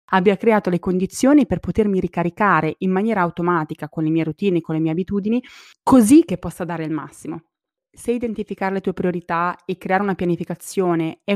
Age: 20-39